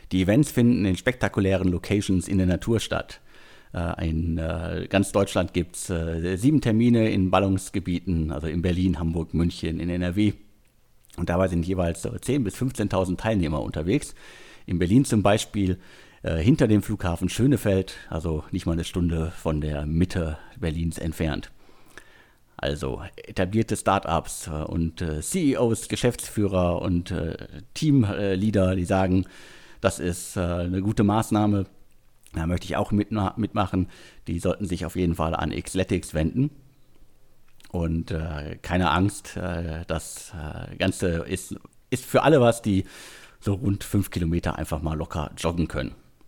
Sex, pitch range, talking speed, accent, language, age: male, 85-105 Hz, 135 wpm, German, German, 50-69